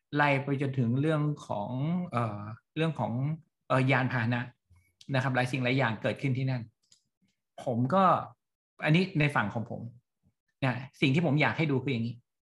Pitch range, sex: 125-150 Hz, male